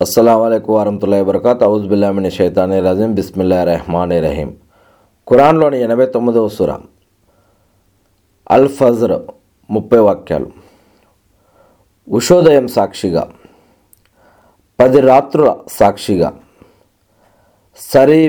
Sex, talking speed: male, 75 wpm